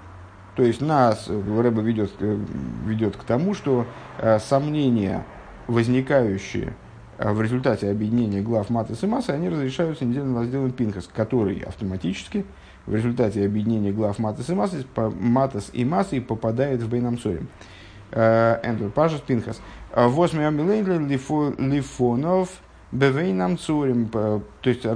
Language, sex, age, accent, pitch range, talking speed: Russian, male, 50-69, native, 105-135 Hz, 105 wpm